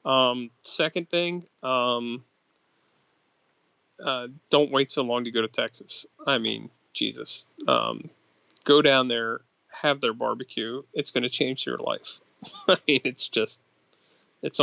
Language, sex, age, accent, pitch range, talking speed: English, male, 20-39, American, 120-135 Hz, 140 wpm